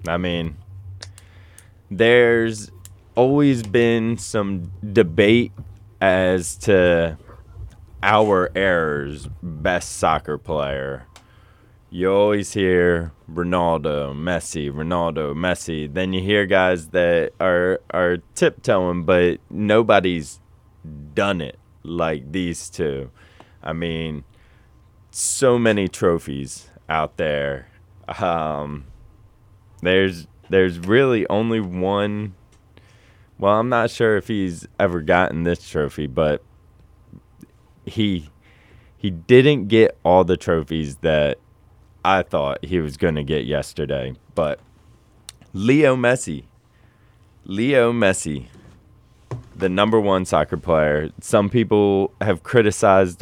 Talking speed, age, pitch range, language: 100 wpm, 20-39, 85-105 Hz, English